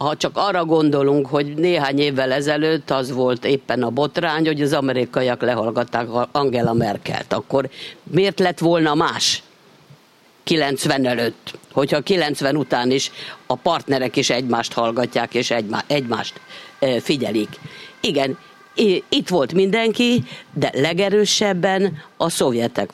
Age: 50-69